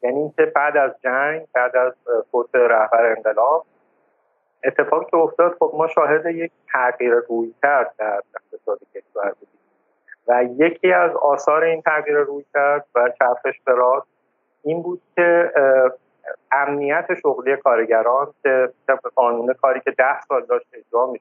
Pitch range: 125-170 Hz